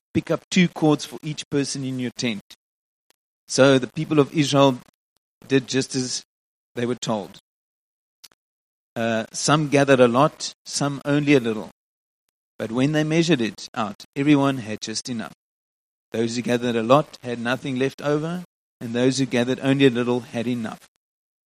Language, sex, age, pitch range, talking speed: English, male, 30-49, 125-155 Hz, 160 wpm